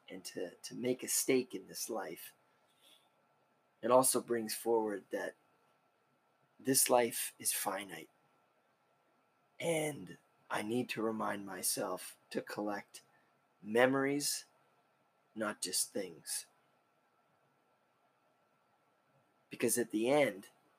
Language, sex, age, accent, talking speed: English, male, 30-49, American, 100 wpm